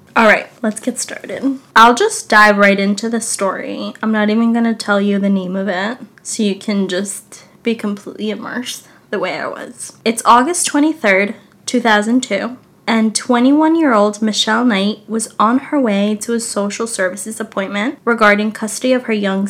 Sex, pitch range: female, 205-245 Hz